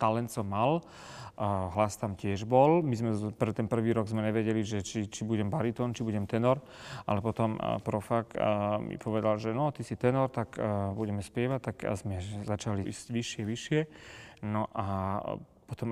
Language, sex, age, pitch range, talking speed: Slovak, male, 30-49, 105-115 Hz, 175 wpm